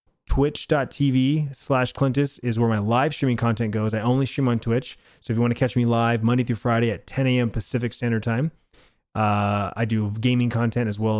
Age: 30-49